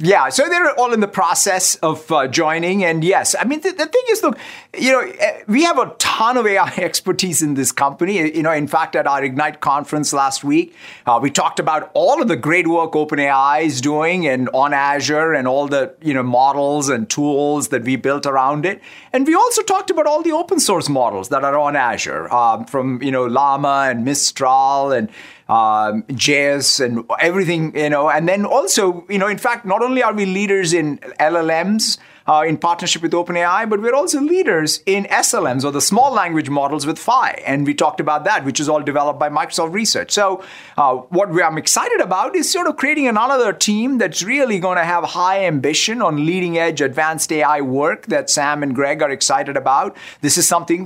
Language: English